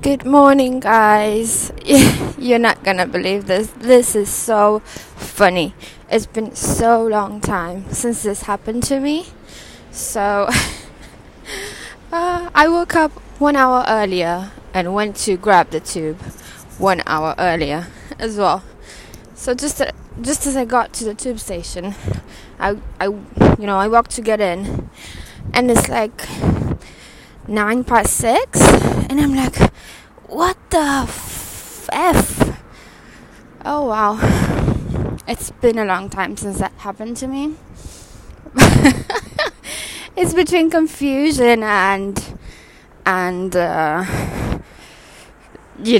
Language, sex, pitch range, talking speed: English, female, 185-250 Hz, 120 wpm